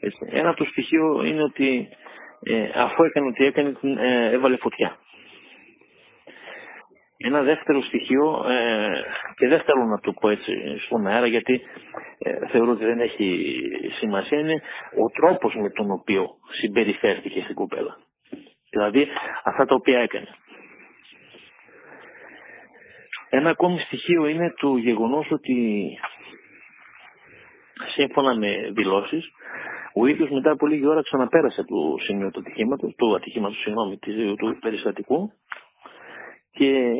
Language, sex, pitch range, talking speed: Greek, male, 125-165 Hz, 120 wpm